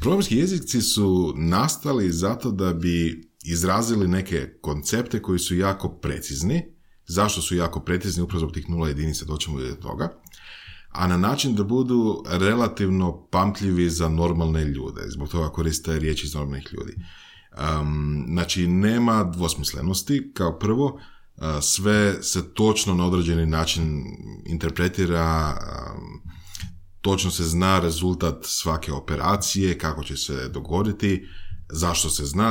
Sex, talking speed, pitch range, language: male, 125 wpm, 80-95 Hz, Croatian